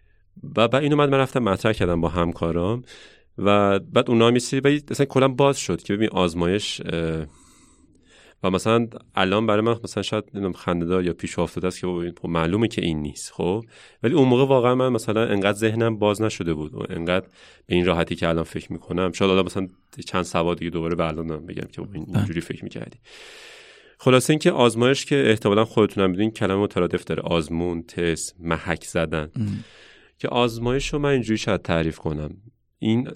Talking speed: 170 wpm